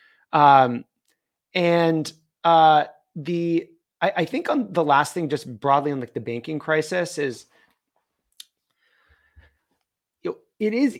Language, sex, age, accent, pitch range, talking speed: English, male, 30-49, American, 135-165 Hz, 125 wpm